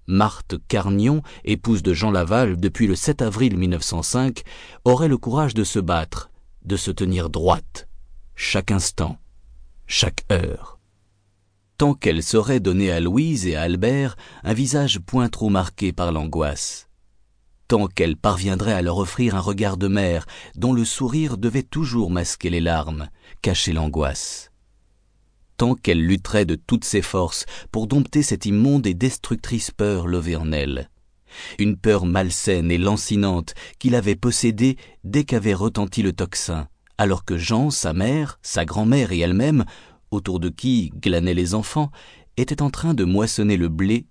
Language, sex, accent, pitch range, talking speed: French, male, French, 90-115 Hz, 150 wpm